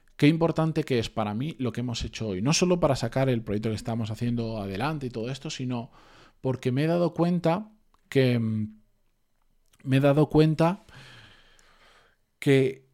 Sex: male